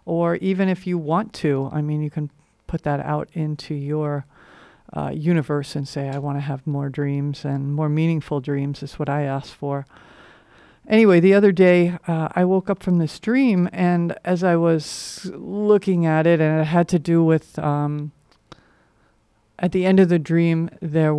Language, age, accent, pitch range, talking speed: English, 50-69, American, 145-175 Hz, 185 wpm